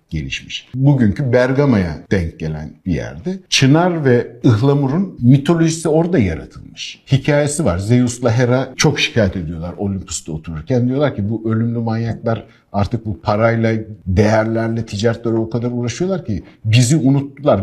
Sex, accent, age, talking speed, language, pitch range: male, native, 60-79, 130 wpm, Turkish, 110-145 Hz